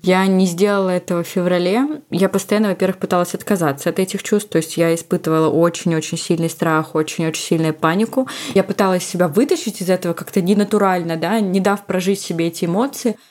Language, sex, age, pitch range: Russian, female, 20-39, 170-205 Hz